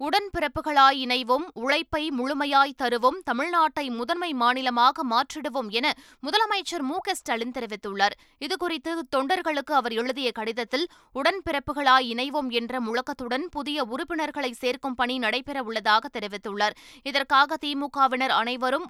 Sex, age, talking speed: female, 20-39, 105 wpm